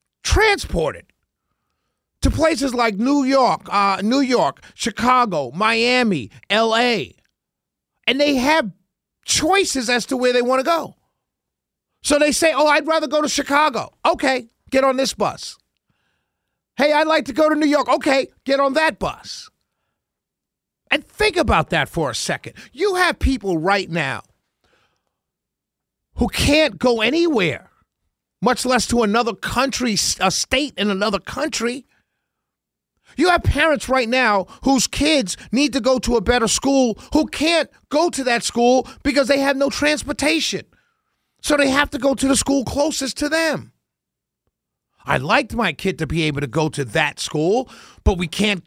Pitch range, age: 230-295 Hz, 50-69